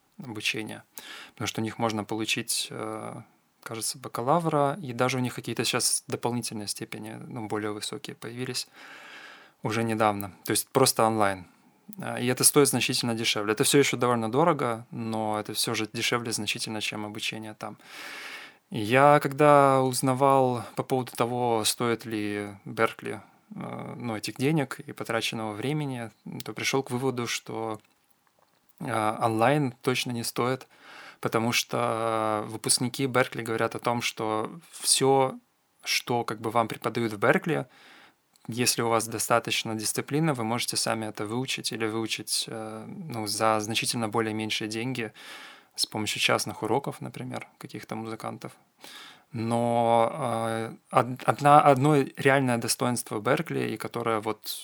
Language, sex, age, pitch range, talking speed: Russian, male, 20-39, 110-130 Hz, 135 wpm